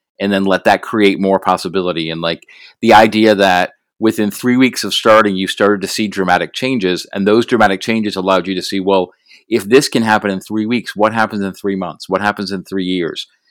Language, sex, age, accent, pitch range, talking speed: English, male, 40-59, American, 95-110 Hz, 220 wpm